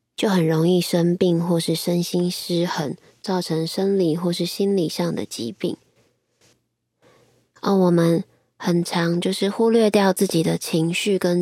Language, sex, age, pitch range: Chinese, female, 20-39, 160-195 Hz